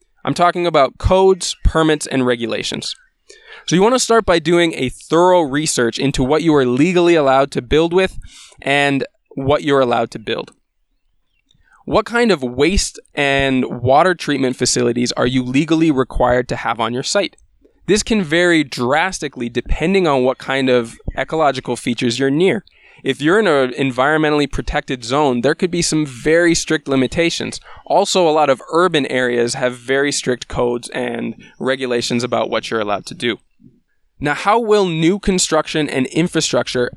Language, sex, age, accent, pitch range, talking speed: English, male, 20-39, American, 125-160 Hz, 165 wpm